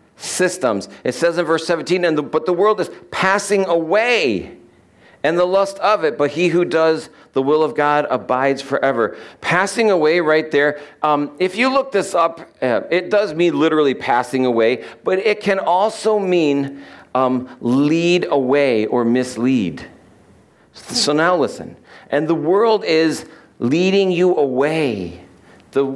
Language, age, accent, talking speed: English, 50-69, American, 155 wpm